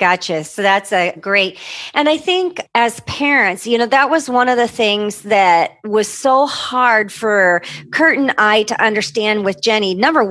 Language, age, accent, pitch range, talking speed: English, 40-59, American, 195-255 Hz, 180 wpm